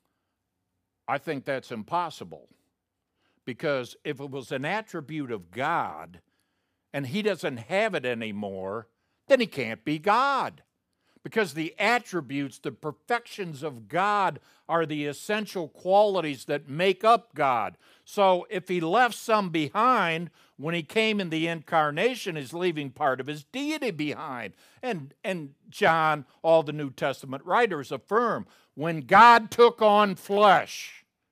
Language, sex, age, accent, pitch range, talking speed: English, male, 60-79, American, 135-200 Hz, 135 wpm